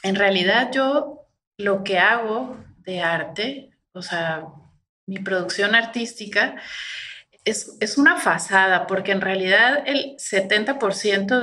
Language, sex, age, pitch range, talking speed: Spanish, female, 30-49, 180-215 Hz, 115 wpm